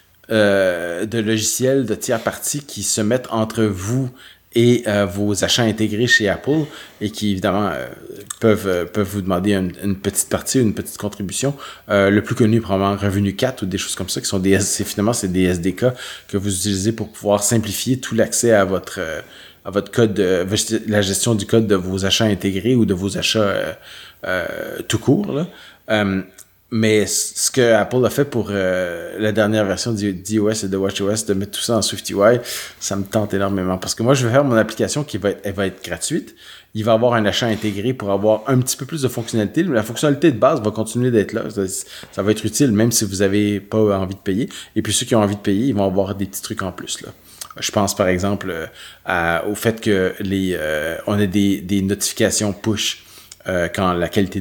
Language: French